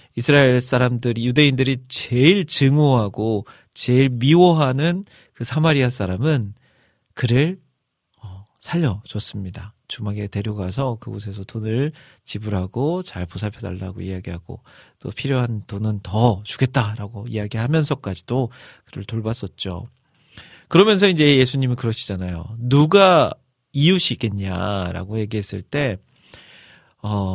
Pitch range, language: 105-140 Hz, Korean